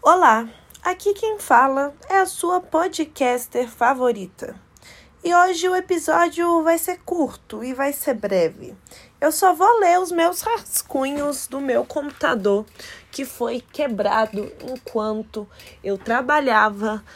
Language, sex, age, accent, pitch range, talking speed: Portuguese, female, 20-39, Brazilian, 220-300 Hz, 125 wpm